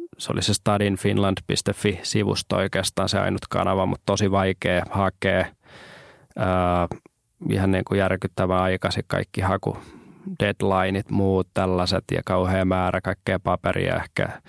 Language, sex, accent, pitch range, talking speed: Finnish, male, native, 95-105 Hz, 115 wpm